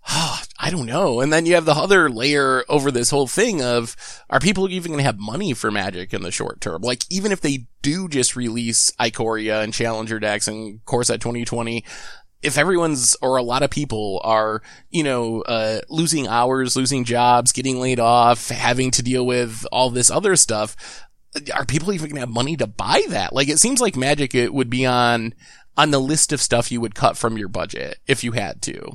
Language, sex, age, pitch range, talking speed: English, male, 20-39, 115-150 Hz, 215 wpm